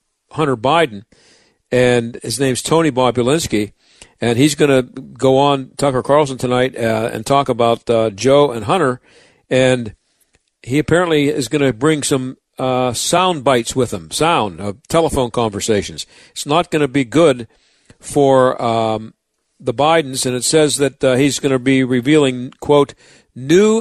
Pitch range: 125-155 Hz